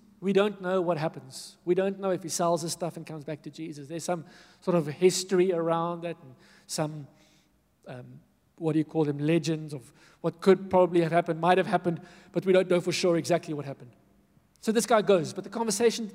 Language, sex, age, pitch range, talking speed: English, male, 50-69, 165-205 Hz, 220 wpm